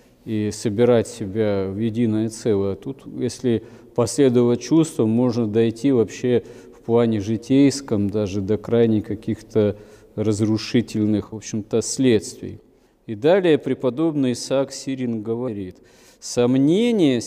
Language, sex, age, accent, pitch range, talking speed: Russian, male, 40-59, native, 110-140 Hz, 115 wpm